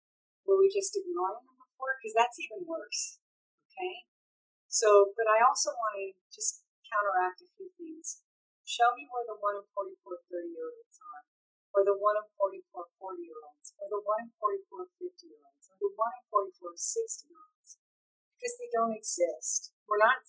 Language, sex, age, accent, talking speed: English, female, 40-59, American, 185 wpm